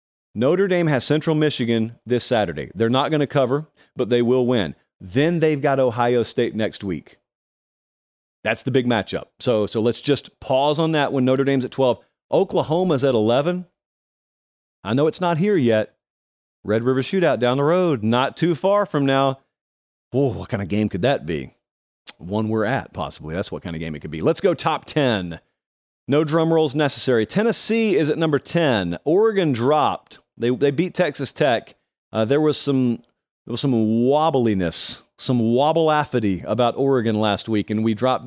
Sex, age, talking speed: male, 40-59, 180 wpm